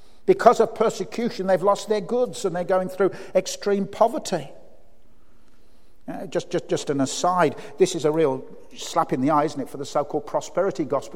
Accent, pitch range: British, 160-205 Hz